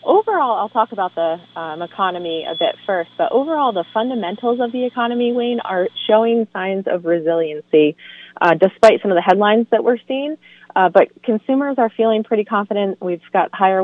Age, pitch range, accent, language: 30-49, 165-210 Hz, American, English